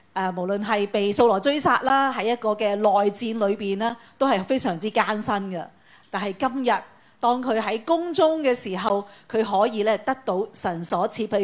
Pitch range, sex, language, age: 195-250 Hz, female, Chinese, 40-59